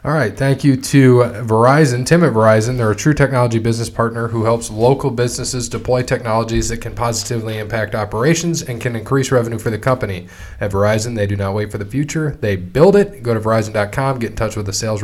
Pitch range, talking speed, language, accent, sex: 110-130 Hz, 215 wpm, English, American, male